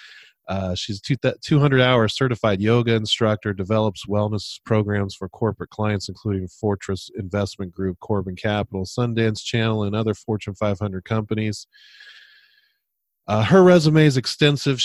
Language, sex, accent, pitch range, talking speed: English, male, American, 95-115 Hz, 125 wpm